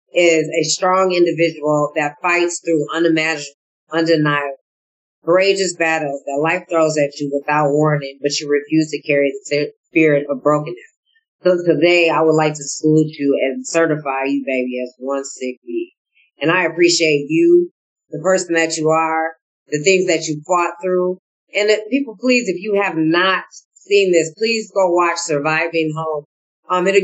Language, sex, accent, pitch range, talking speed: English, female, American, 150-180 Hz, 165 wpm